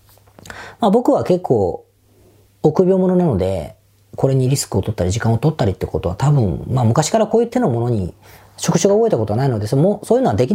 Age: 40-59